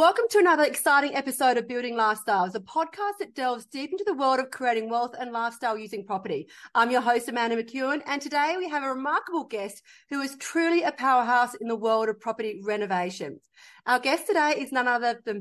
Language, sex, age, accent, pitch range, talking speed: English, female, 30-49, Australian, 225-285 Hz, 205 wpm